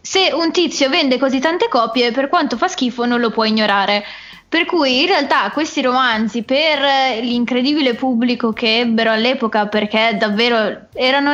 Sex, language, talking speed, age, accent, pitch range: female, Italian, 160 wpm, 10-29, native, 225-275 Hz